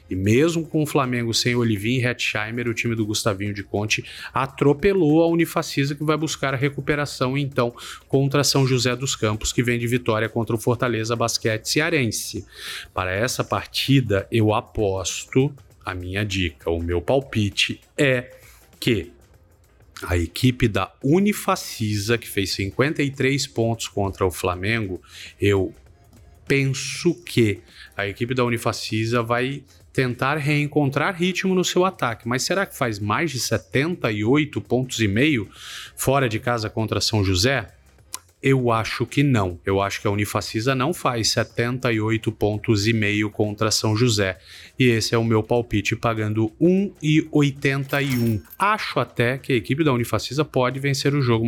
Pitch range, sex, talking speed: 110-135 Hz, male, 145 wpm